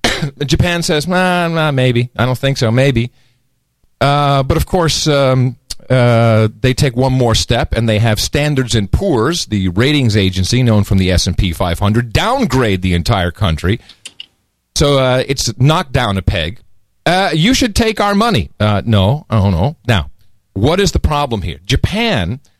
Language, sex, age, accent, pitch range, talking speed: English, male, 40-59, American, 105-160 Hz, 170 wpm